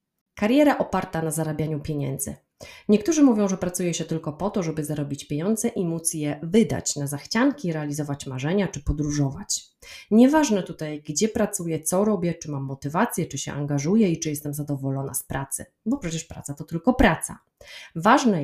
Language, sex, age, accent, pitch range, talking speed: Polish, female, 30-49, native, 150-205 Hz, 165 wpm